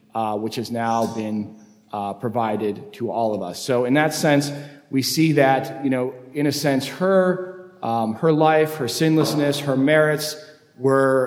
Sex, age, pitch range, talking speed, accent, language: male, 40-59, 125-165 Hz, 170 wpm, American, English